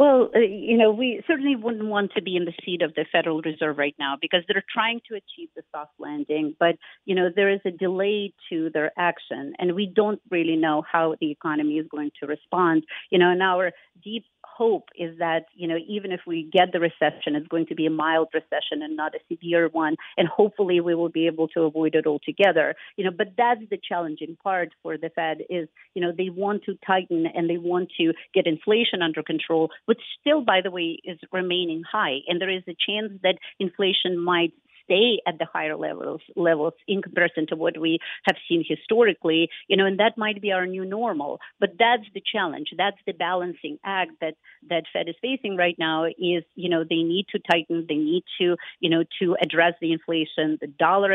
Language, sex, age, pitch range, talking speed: English, female, 50-69, 160-195 Hz, 215 wpm